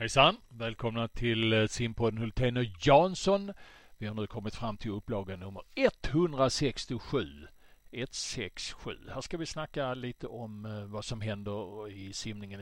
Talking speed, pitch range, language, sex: 135 wpm, 110-135 Hz, Swedish, male